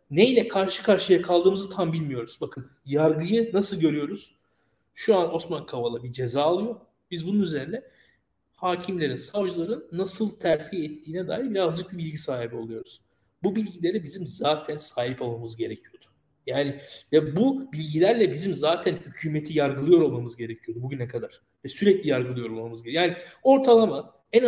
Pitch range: 155-220 Hz